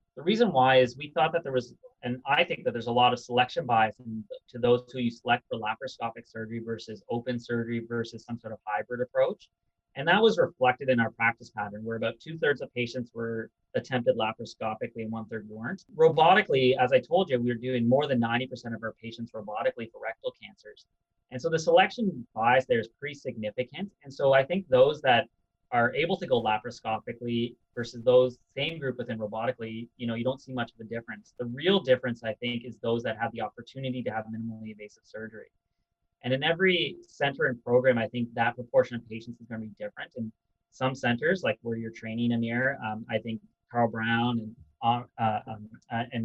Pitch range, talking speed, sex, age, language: 115-130 Hz, 205 wpm, male, 30-49, English